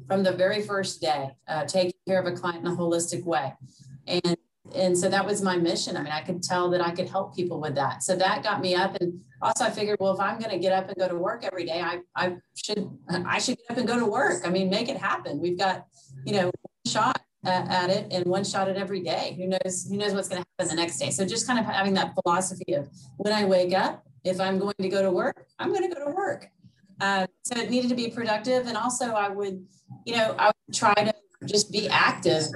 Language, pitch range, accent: English, 175-200 Hz, American